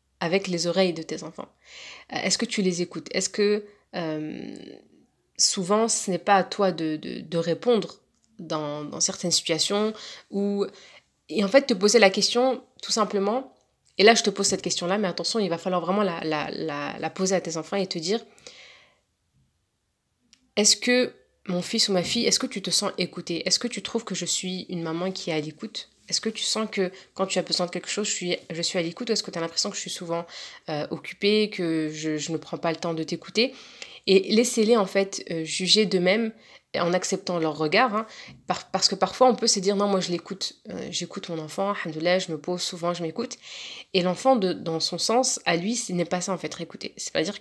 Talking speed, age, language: 230 wpm, 30-49, French